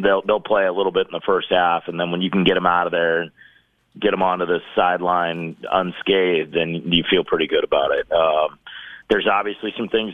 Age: 40-59